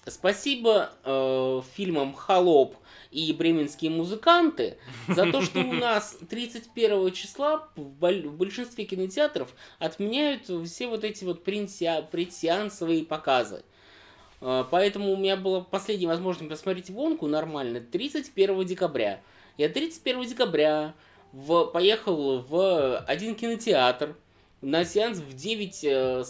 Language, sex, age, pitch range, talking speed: Russian, male, 20-39, 140-215 Hz, 110 wpm